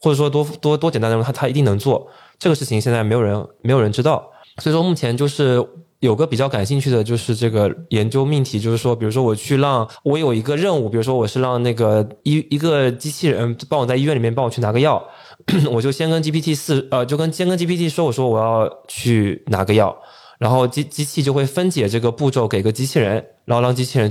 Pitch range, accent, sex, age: 110-150 Hz, native, male, 20-39